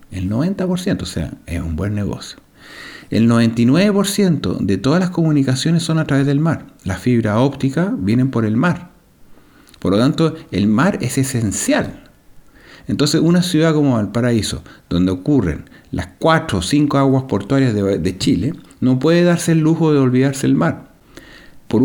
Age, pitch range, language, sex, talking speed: 50-69, 110-155 Hz, French, male, 160 wpm